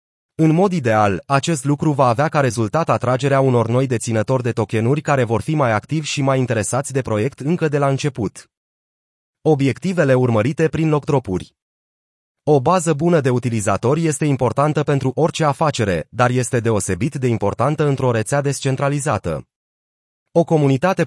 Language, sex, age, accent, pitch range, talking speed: Romanian, male, 30-49, native, 115-150 Hz, 150 wpm